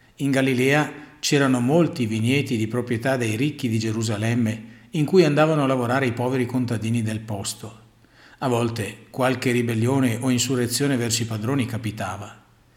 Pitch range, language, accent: 115-145 Hz, Italian, native